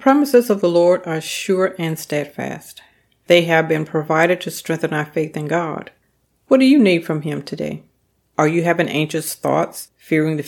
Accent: American